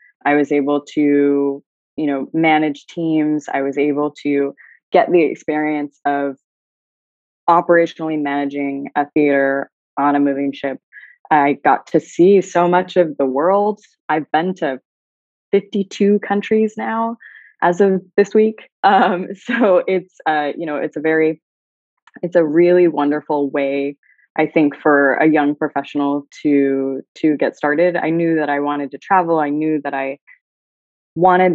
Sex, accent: female, American